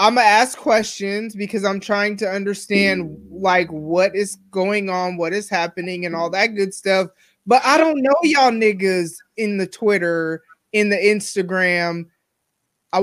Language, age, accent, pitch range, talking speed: English, 20-39, American, 185-230 Hz, 160 wpm